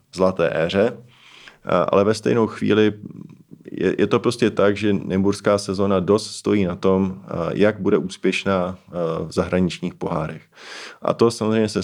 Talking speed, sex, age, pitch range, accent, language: 140 wpm, male, 20-39, 90-100 Hz, native, Czech